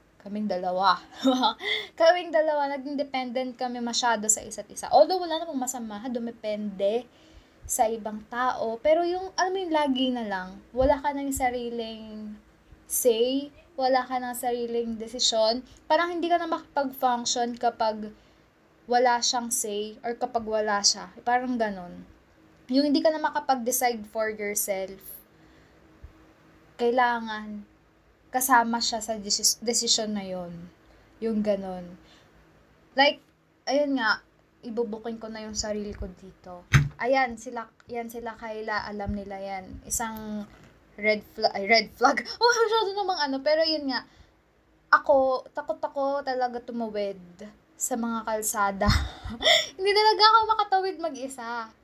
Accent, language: native, Filipino